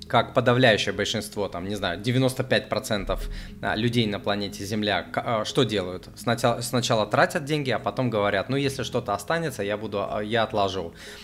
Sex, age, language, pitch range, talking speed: male, 20-39, Russian, 105-135 Hz, 150 wpm